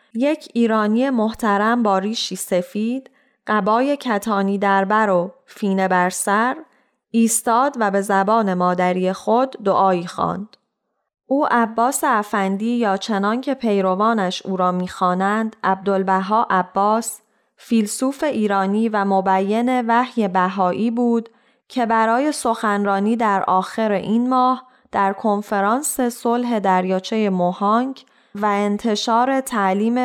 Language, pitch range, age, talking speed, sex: Persian, 195-245 Hz, 10-29, 110 wpm, female